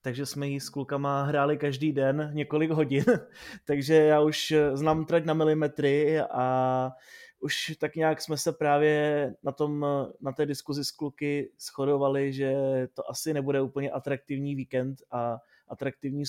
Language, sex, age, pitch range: Czech, male, 20-39, 135-155 Hz